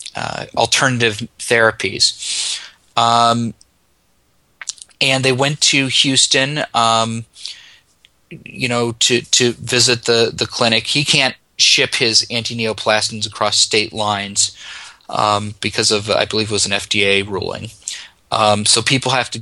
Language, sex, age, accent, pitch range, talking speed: English, male, 30-49, American, 105-125 Hz, 125 wpm